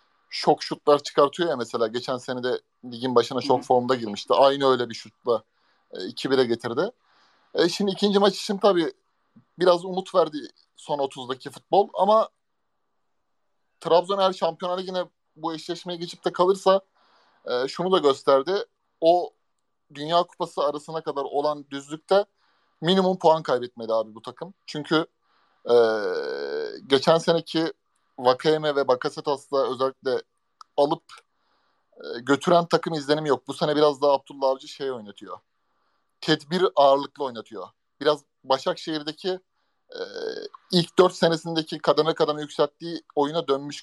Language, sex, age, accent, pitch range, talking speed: Turkish, male, 30-49, native, 140-180 Hz, 130 wpm